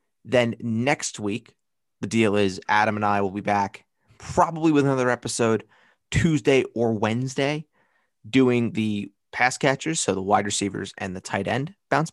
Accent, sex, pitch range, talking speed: American, male, 100-120 Hz, 160 wpm